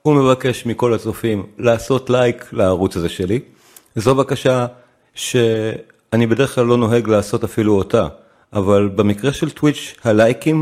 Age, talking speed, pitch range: 40-59, 135 wpm, 100-130 Hz